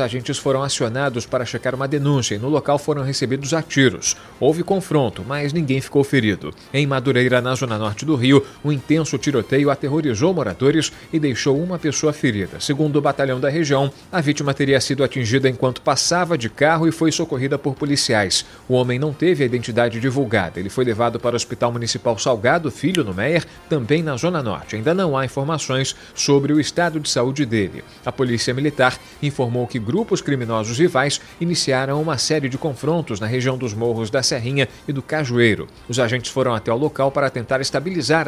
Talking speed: 185 wpm